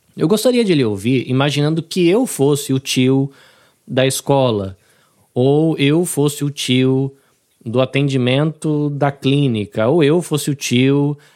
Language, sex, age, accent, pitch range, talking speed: Portuguese, male, 20-39, Brazilian, 130-175 Hz, 145 wpm